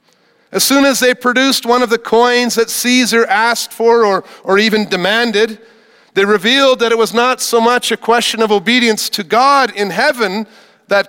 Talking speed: 185 wpm